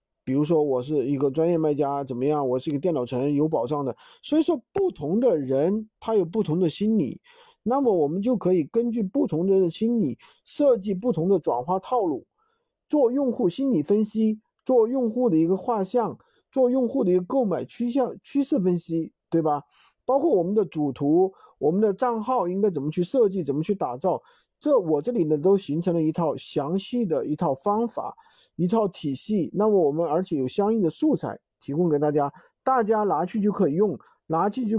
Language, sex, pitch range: Chinese, male, 155-230 Hz